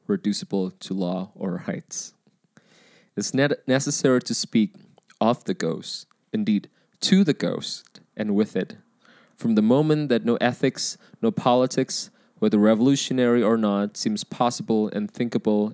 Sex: male